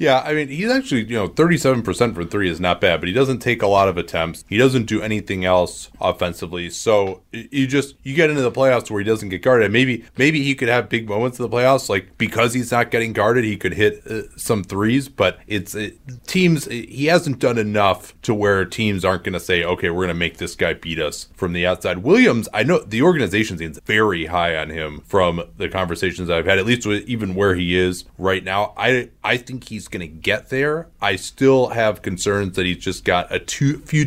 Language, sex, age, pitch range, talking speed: English, male, 30-49, 95-125 Hz, 235 wpm